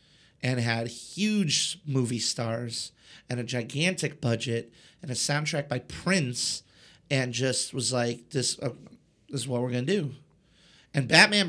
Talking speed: 150 wpm